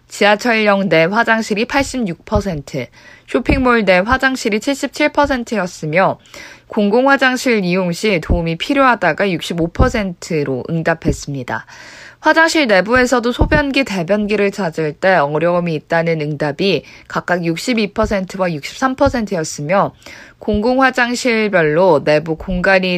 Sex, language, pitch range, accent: female, Korean, 170-235 Hz, native